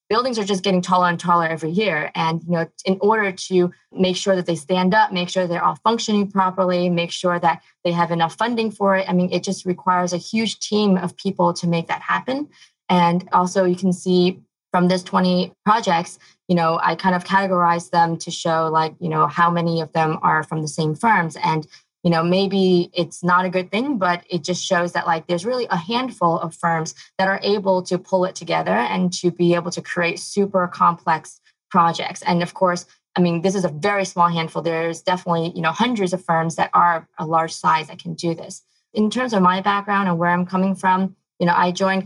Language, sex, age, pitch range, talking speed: English, female, 20-39, 170-190 Hz, 225 wpm